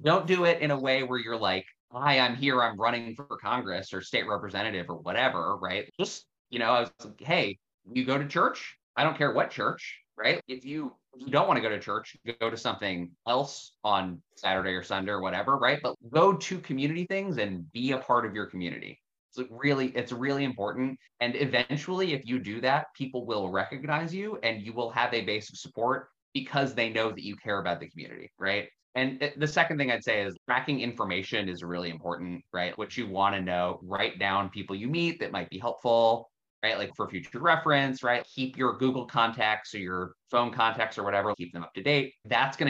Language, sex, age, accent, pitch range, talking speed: English, male, 20-39, American, 100-135 Hz, 220 wpm